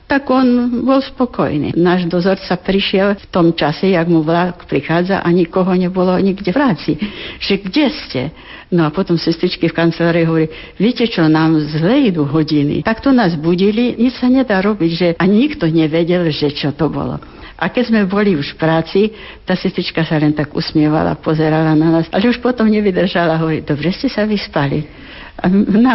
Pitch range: 155-195 Hz